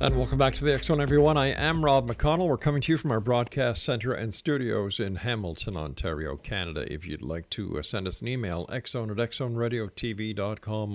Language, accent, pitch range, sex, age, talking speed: English, American, 100-125 Hz, male, 50-69, 205 wpm